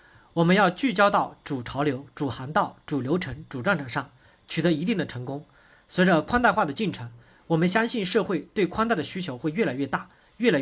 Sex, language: male, Chinese